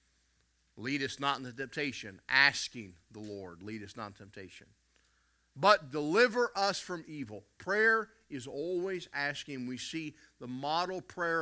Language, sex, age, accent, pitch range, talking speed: English, male, 50-69, American, 105-165 Hz, 140 wpm